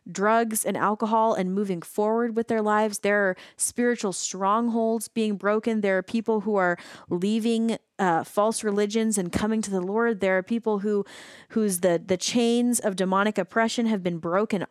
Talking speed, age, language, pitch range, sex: 175 wpm, 20-39, English, 190-230 Hz, female